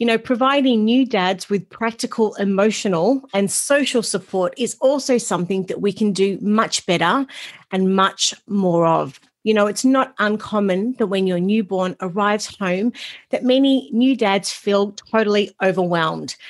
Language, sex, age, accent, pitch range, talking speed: English, female, 40-59, Australian, 180-225 Hz, 155 wpm